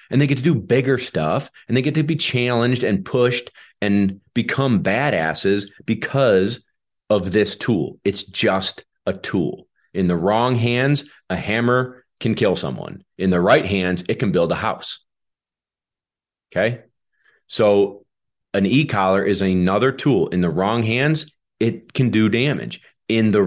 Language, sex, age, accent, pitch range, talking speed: English, male, 30-49, American, 95-120 Hz, 155 wpm